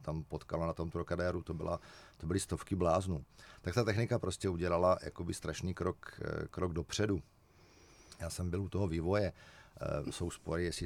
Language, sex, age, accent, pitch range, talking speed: Czech, male, 50-69, native, 80-95 Hz, 165 wpm